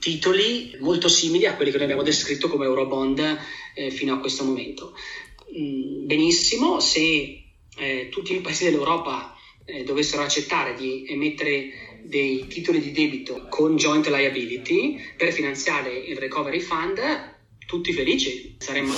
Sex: male